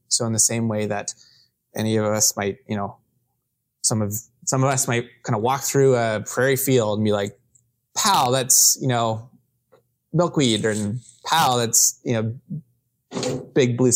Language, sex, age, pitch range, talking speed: English, male, 20-39, 110-130 Hz, 170 wpm